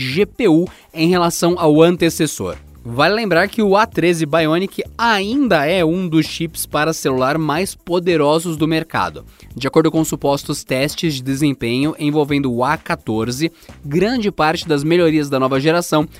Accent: Brazilian